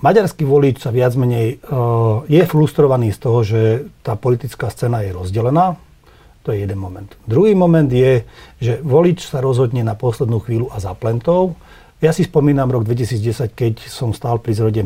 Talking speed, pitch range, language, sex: 170 wpm, 110-145 Hz, Slovak, male